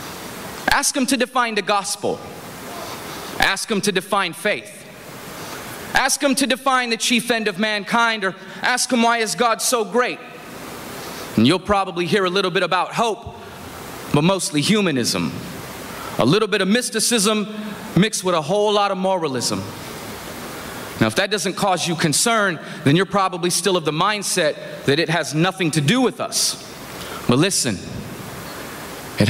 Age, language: 30-49, English